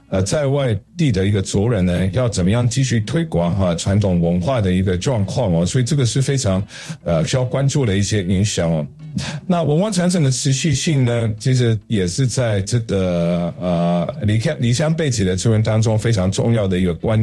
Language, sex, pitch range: Chinese, male, 100-140 Hz